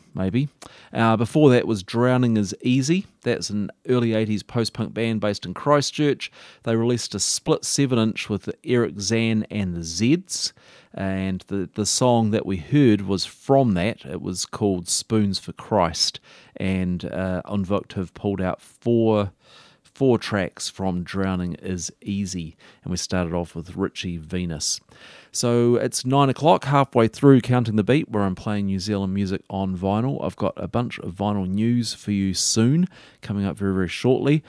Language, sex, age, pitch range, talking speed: English, male, 40-59, 90-115 Hz, 170 wpm